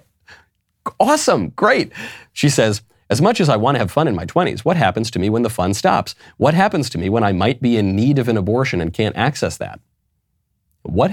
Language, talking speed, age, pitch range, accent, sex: English, 220 wpm, 30-49, 95-130 Hz, American, male